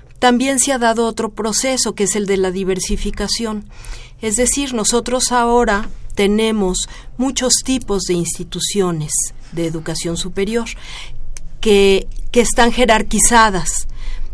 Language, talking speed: Spanish, 115 wpm